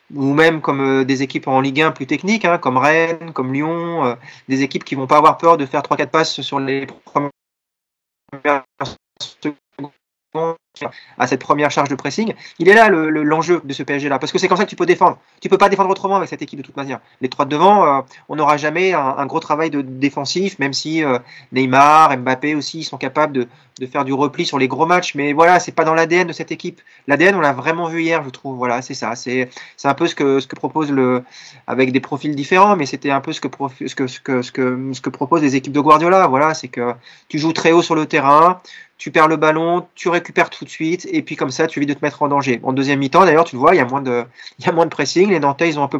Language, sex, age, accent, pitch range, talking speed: French, male, 30-49, French, 135-165 Hz, 260 wpm